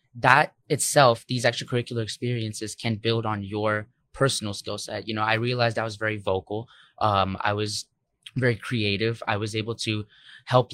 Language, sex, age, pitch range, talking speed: English, male, 20-39, 105-125 Hz, 170 wpm